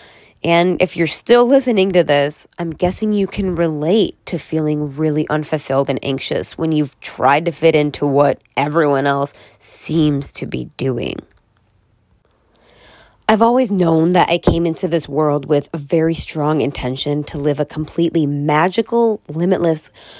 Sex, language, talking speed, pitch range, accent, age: female, English, 150 wpm, 150-195 Hz, American, 20-39